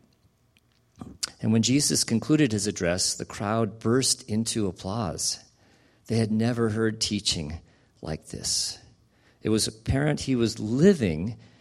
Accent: American